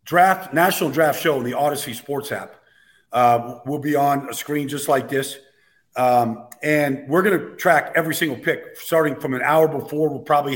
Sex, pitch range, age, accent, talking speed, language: male, 135-160 Hz, 50-69, American, 195 wpm, English